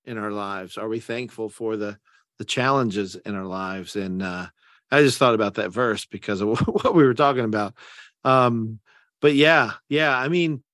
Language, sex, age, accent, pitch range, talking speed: English, male, 50-69, American, 105-135 Hz, 190 wpm